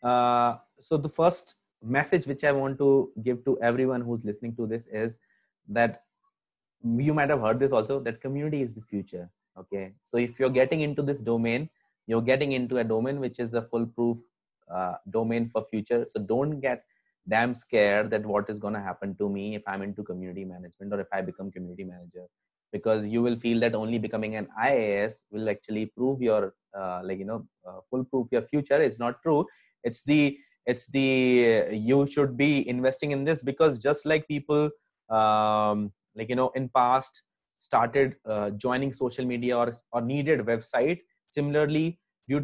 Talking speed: 185 wpm